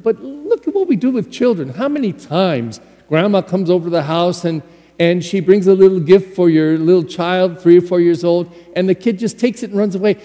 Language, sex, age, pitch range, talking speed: English, male, 50-69, 160-220 Hz, 245 wpm